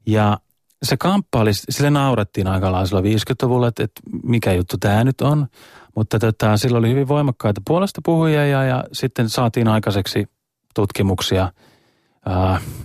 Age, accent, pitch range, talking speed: 30-49, native, 100-130 Hz, 140 wpm